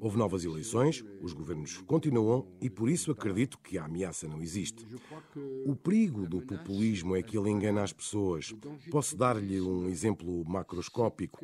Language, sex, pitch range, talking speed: Portuguese, male, 95-140 Hz, 155 wpm